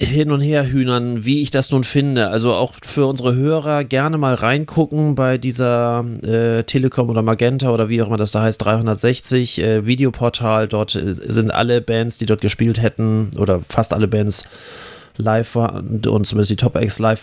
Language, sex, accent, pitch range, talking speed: German, male, German, 110-135 Hz, 185 wpm